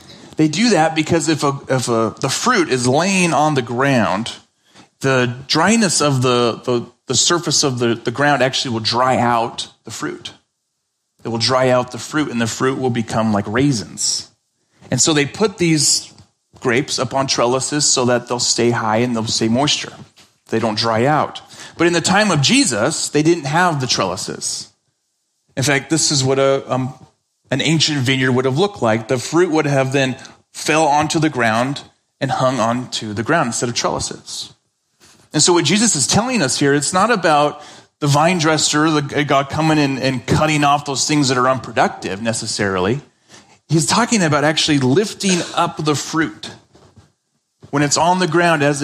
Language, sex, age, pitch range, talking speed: English, male, 30-49, 125-155 Hz, 185 wpm